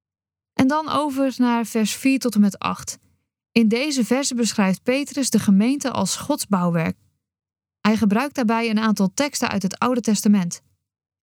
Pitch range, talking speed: 185-250 Hz, 160 wpm